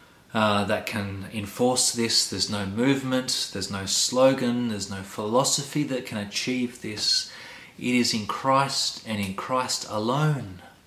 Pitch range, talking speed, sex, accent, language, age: 100-125 Hz, 145 wpm, male, Australian, English, 30-49